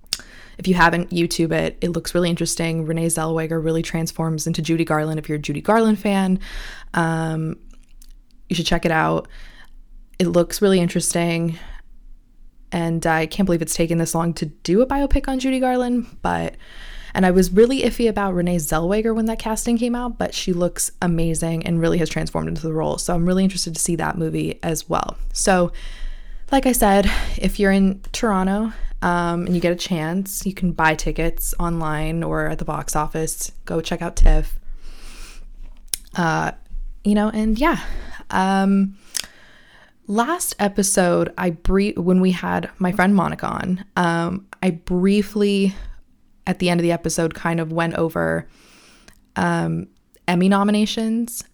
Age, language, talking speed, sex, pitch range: 20-39, English, 165 wpm, female, 165-195 Hz